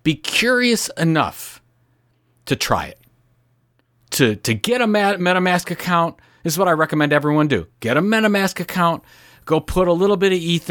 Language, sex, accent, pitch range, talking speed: English, male, American, 130-180 Hz, 170 wpm